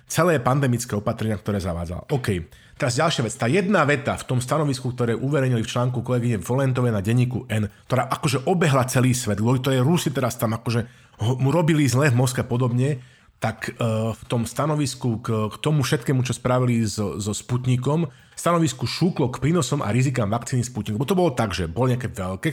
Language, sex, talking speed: Slovak, male, 180 wpm